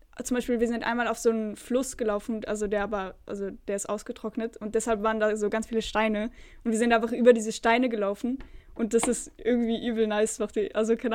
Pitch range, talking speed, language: 215-250 Hz, 225 wpm, German